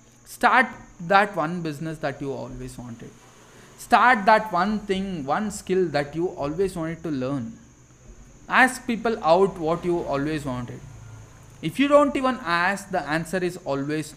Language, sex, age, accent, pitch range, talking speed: English, male, 20-39, Indian, 150-205 Hz, 155 wpm